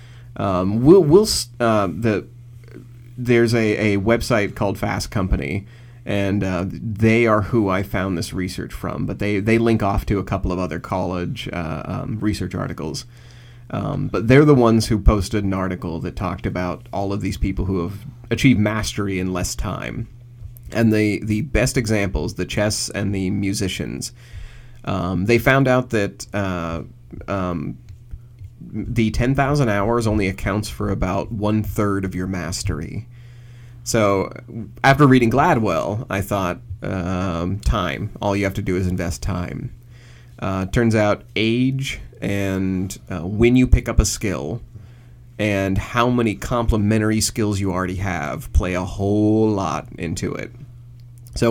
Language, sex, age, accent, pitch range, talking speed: English, male, 30-49, American, 95-120 Hz, 155 wpm